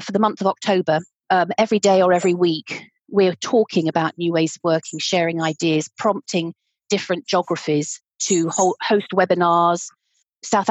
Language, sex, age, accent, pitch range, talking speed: English, female, 40-59, British, 175-230 Hz, 150 wpm